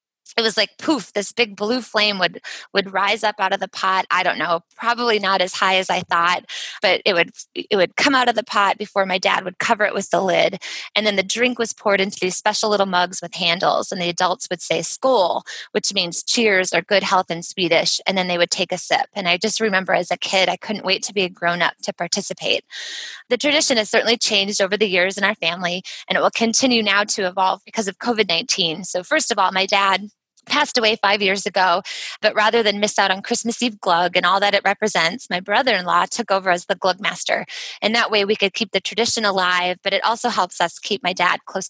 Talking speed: 245 wpm